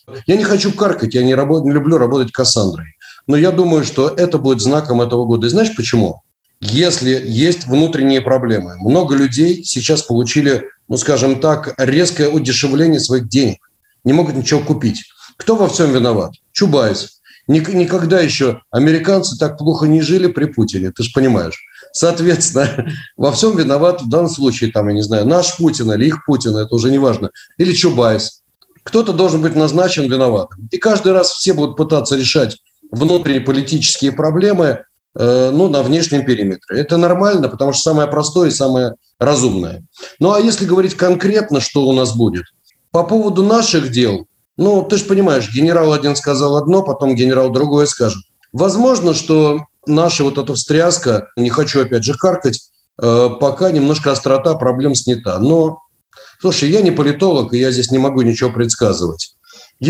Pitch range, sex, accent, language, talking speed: 125-170 Hz, male, native, Russian, 165 wpm